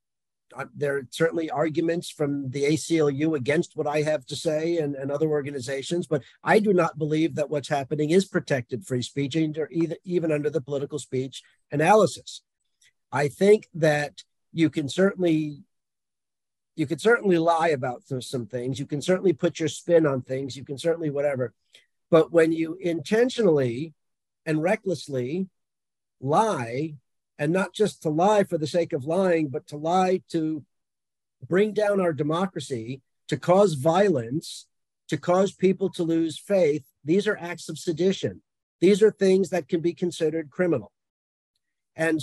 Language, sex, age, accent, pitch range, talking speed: English, male, 50-69, American, 145-180 Hz, 155 wpm